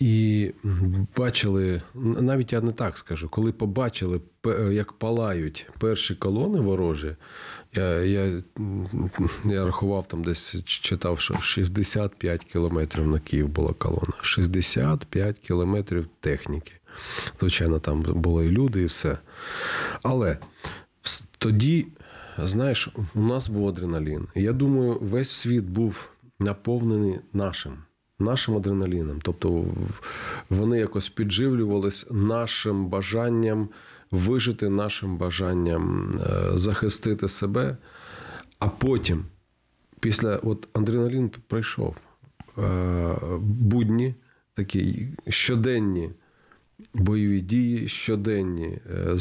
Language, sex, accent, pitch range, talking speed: Ukrainian, male, native, 90-115 Hz, 95 wpm